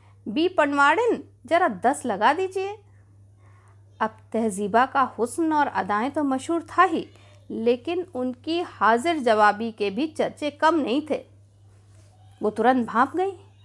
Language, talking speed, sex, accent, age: Hindi, 130 wpm, female, native, 50-69